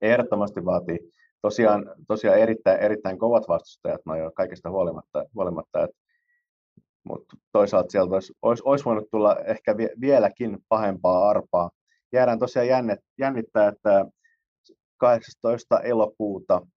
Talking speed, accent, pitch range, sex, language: 100 wpm, native, 100-125 Hz, male, Finnish